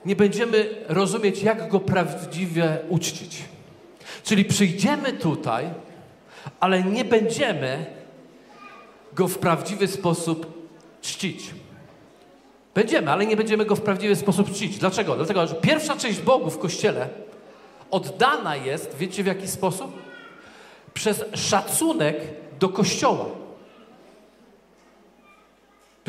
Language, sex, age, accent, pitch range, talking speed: Polish, male, 40-59, native, 195-250 Hz, 105 wpm